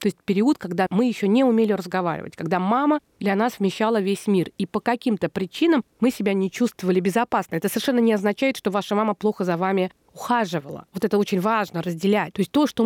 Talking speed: 210 wpm